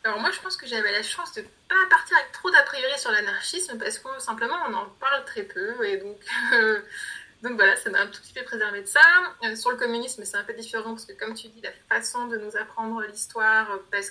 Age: 20-39